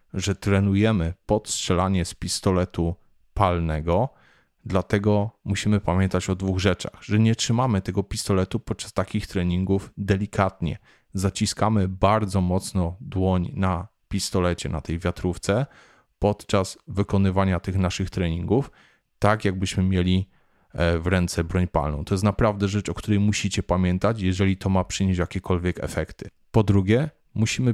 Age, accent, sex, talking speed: 30-49, native, male, 130 wpm